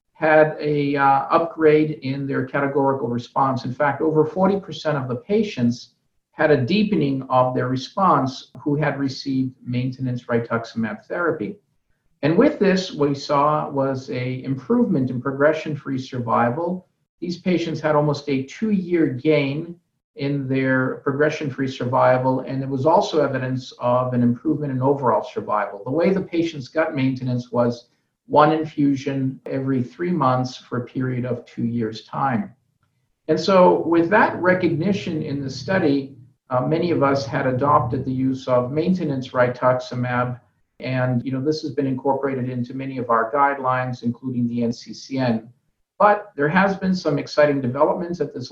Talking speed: 150 wpm